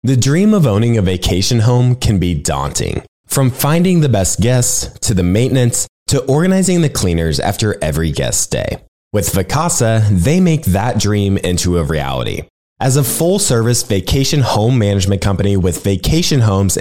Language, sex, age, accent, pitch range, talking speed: English, male, 20-39, American, 95-140 Hz, 160 wpm